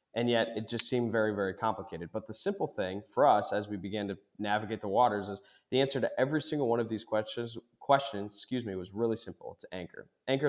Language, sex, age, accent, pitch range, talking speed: English, male, 20-39, American, 105-125 Hz, 230 wpm